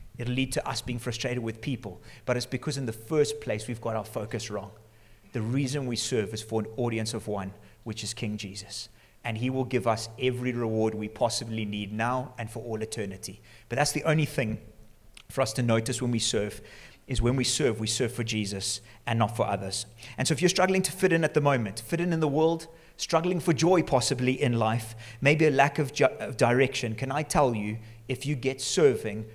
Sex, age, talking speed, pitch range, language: male, 30-49, 225 wpm, 110-135 Hz, English